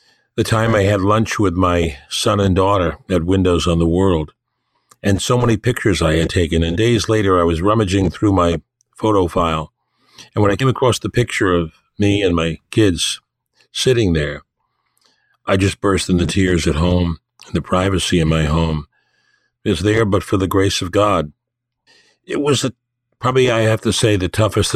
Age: 50-69